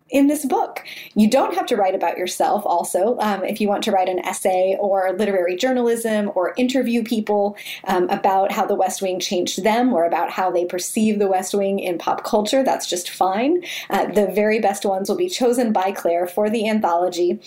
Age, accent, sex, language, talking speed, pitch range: 20-39, American, female, English, 205 wpm, 190-235 Hz